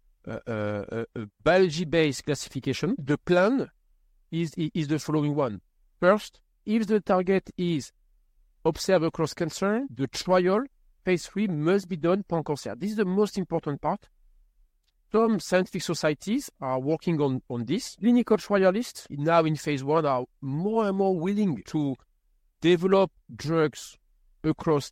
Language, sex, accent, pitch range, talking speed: English, male, French, 140-185 Hz, 140 wpm